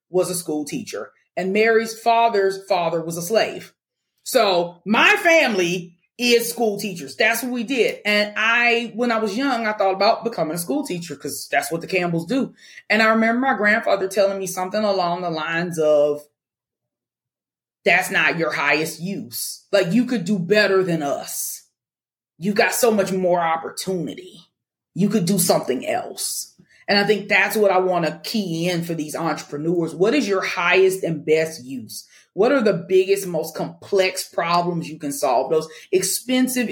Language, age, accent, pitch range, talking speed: English, 30-49, American, 175-230 Hz, 175 wpm